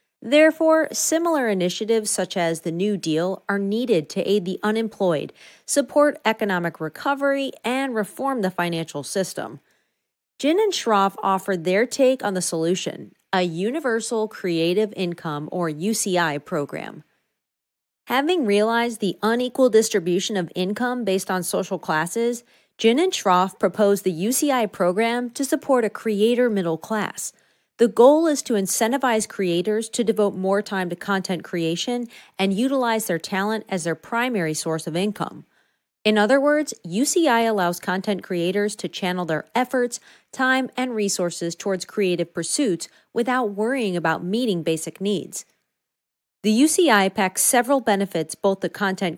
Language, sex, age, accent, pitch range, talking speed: English, female, 40-59, American, 180-240 Hz, 140 wpm